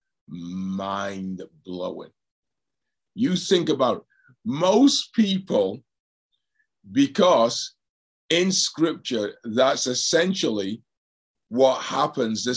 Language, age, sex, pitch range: English, 50-69, male, 125-175 Hz